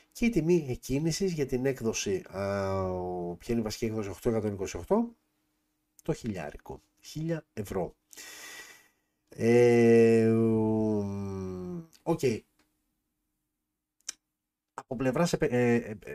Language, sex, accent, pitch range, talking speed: Greek, male, native, 100-140 Hz, 90 wpm